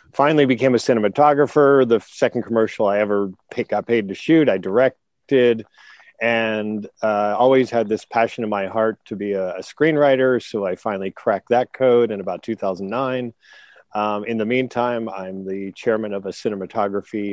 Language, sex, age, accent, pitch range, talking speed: English, male, 40-59, American, 105-130 Hz, 165 wpm